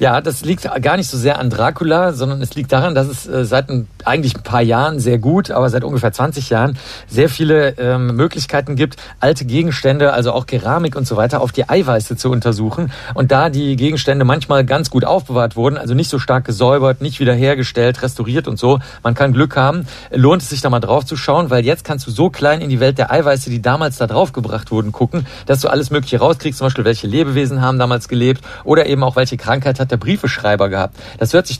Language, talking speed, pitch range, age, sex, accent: German, 225 wpm, 120-140 Hz, 50-69, male, German